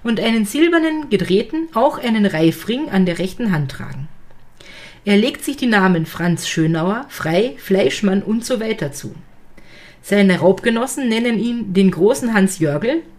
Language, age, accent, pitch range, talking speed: German, 40-59, German, 175-240 Hz, 150 wpm